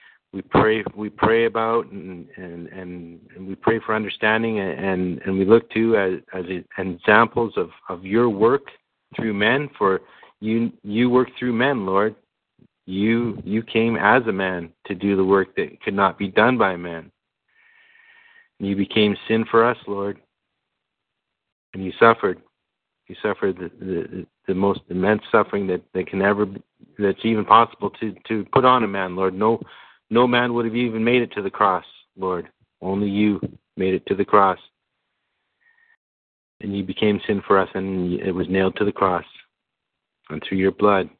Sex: male